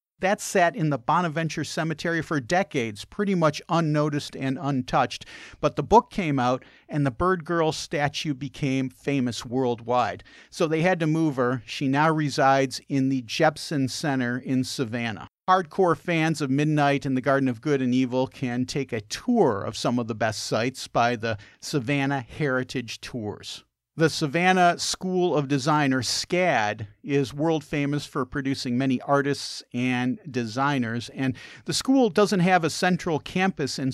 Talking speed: 165 wpm